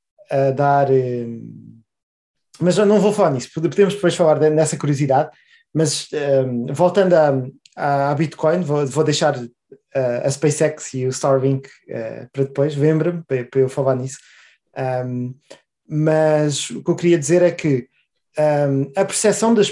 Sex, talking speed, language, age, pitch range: male, 130 wpm, Portuguese, 20-39, 140-175 Hz